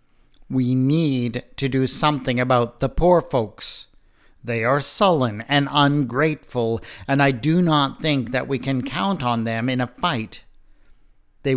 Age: 50-69